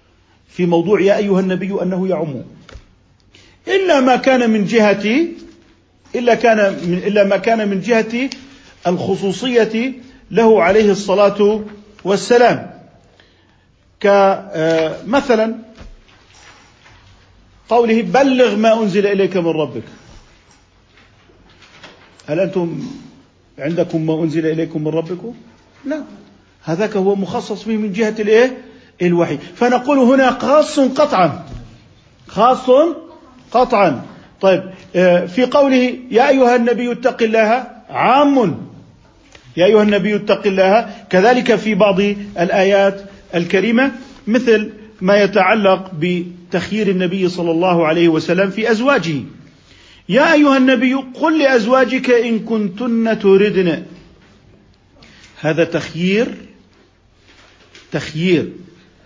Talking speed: 100 wpm